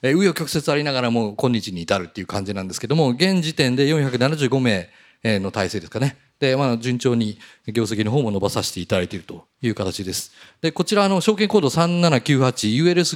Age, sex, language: 40-59, male, Japanese